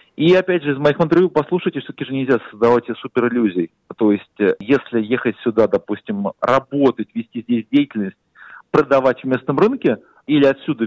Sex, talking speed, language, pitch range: male, 160 wpm, Russian, 115-150 Hz